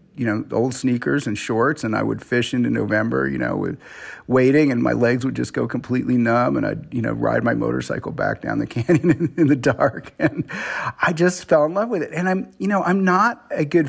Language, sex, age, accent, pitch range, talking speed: English, male, 40-59, American, 120-160 Hz, 235 wpm